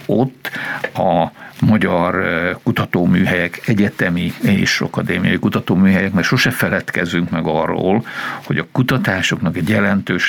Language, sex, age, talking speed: Hungarian, male, 60-79, 105 wpm